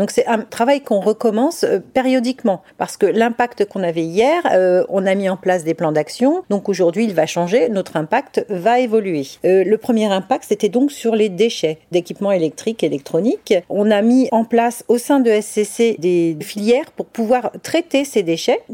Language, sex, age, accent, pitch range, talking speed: French, female, 40-59, French, 195-250 Hz, 185 wpm